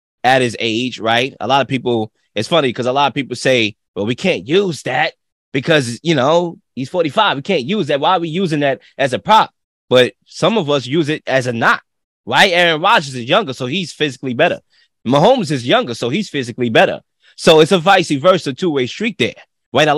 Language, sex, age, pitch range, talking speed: English, male, 20-39, 130-185 Hz, 220 wpm